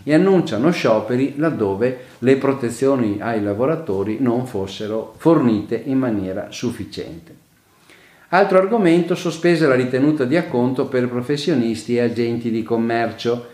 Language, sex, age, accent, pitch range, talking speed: Italian, male, 50-69, native, 110-150 Hz, 120 wpm